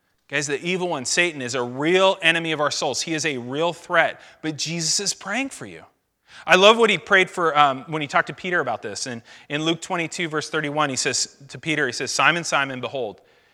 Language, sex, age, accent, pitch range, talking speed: English, male, 30-49, American, 130-180 Hz, 230 wpm